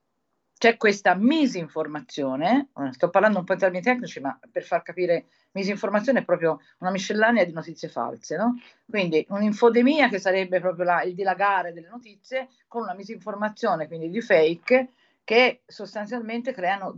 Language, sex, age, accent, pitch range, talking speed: Italian, female, 50-69, native, 155-215 Hz, 150 wpm